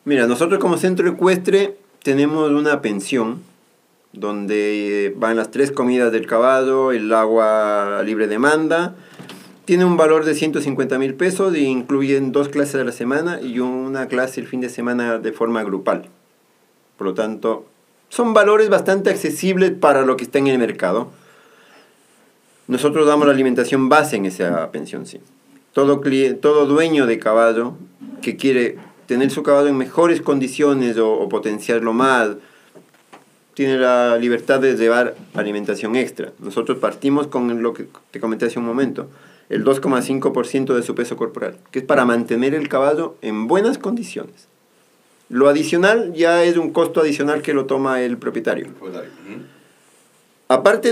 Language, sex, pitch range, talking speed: Spanish, male, 120-155 Hz, 155 wpm